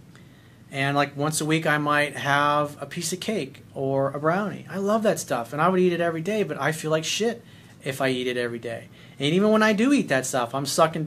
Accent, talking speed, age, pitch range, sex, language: American, 255 wpm, 40-59, 135-180 Hz, male, English